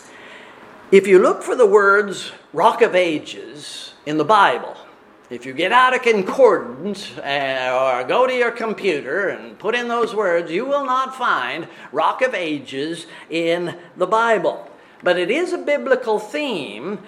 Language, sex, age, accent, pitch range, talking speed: English, male, 50-69, American, 170-255 Hz, 160 wpm